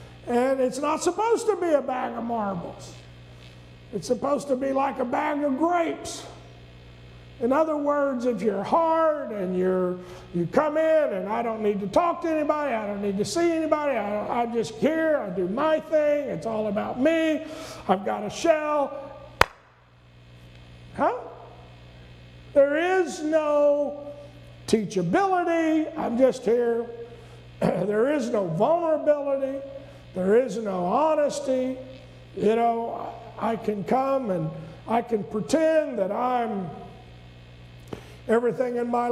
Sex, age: male, 50-69